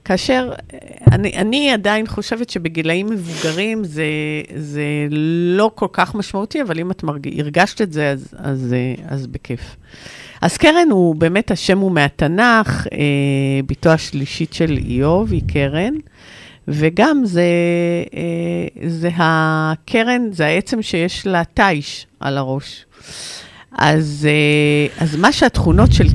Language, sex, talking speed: Hebrew, female, 125 wpm